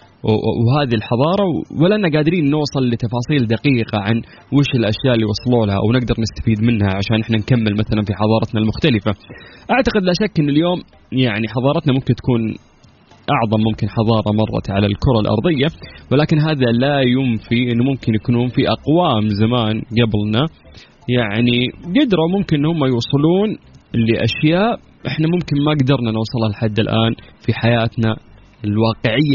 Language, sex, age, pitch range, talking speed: Arabic, male, 20-39, 110-140 Hz, 140 wpm